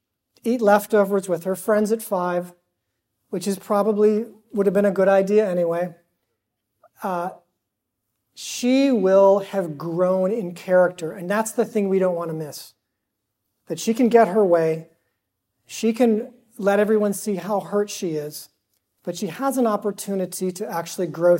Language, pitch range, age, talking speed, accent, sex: English, 165-210 Hz, 40-59, 155 wpm, American, male